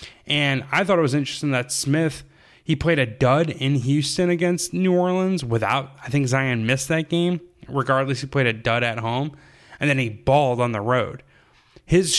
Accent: American